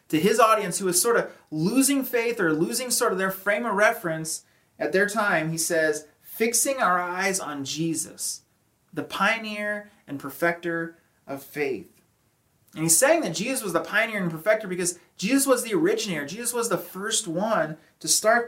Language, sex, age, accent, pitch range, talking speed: English, male, 30-49, American, 165-225 Hz, 180 wpm